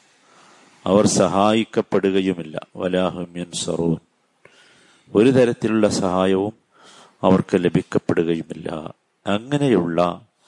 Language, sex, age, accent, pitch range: Malayalam, male, 50-69, native, 90-105 Hz